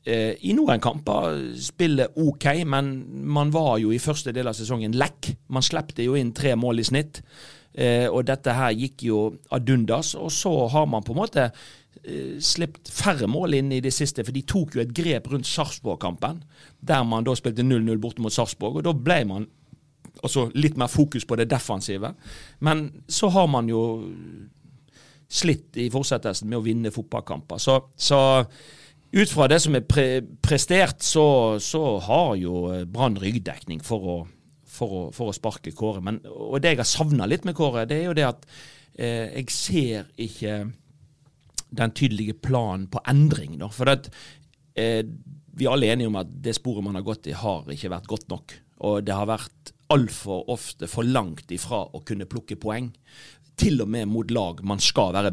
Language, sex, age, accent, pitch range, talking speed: English, male, 40-59, Swedish, 110-145 Hz, 180 wpm